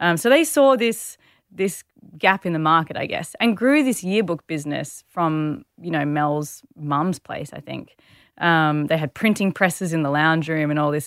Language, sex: English, female